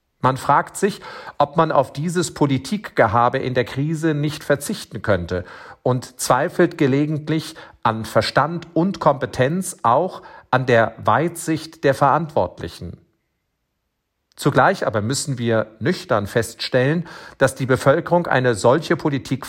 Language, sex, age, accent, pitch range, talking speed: German, male, 50-69, German, 120-160 Hz, 120 wpm